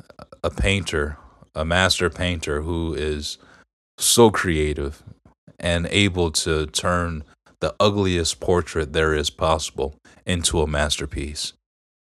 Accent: American